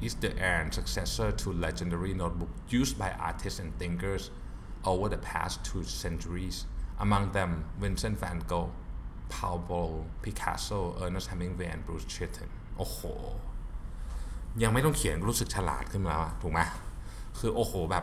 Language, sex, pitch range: Thai, male, 85-110 Hz